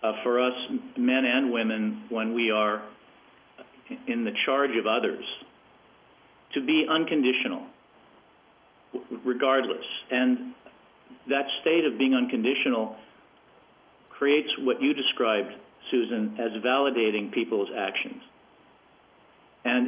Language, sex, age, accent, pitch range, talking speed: English, male, 50-69, American, 115-145 Hz, 105 wpm